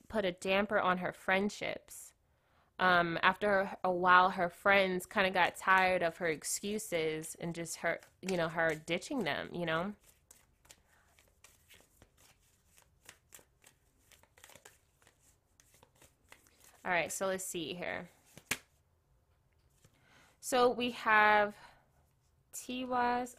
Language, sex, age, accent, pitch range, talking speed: English, female, 20-39, American, 165-205 Hz, 100 wpm